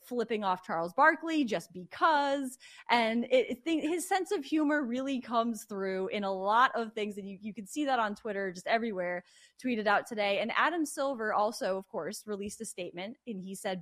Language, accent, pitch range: English, American, 200-265 Hz